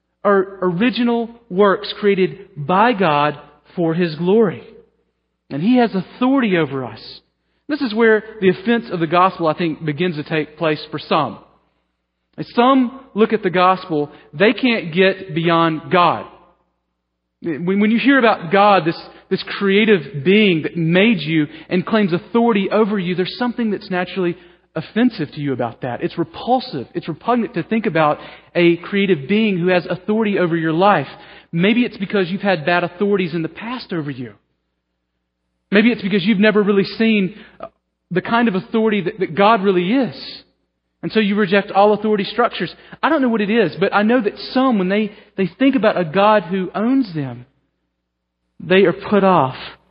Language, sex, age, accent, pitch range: Korean, male, 40-59, American, 160-215 Hz